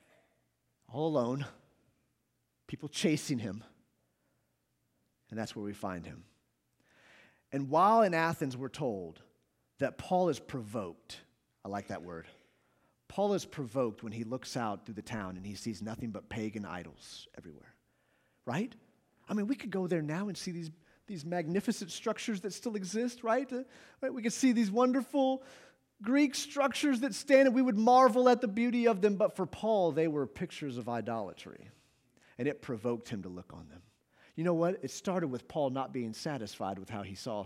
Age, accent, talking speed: 40-59, American, 175 wpm